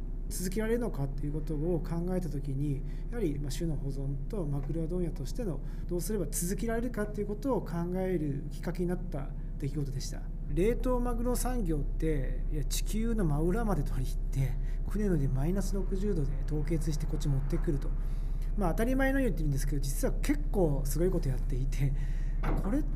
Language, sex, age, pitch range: Japanese, male, 40-59, 140-185 Hz